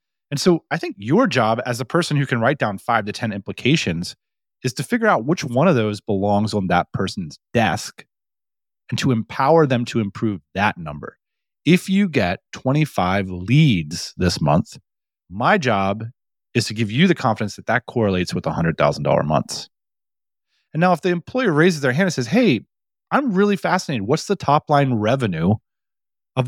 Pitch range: 110-155 Hz